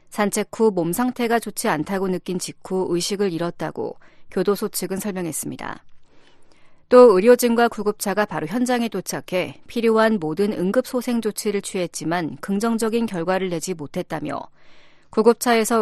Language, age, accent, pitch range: Korean, 40-59, native, 175-225 Hz